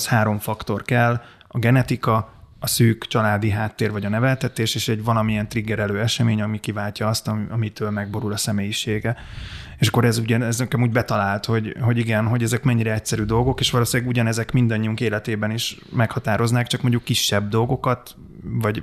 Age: 20-39